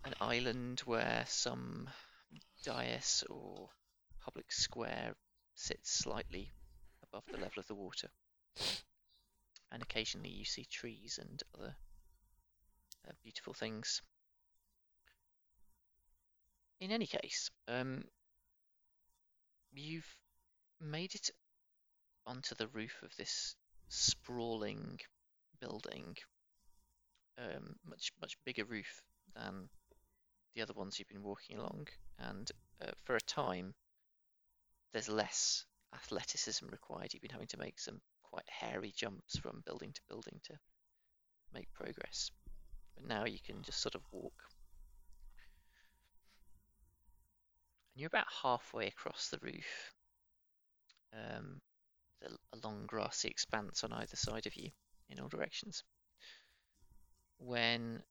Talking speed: 110 wpm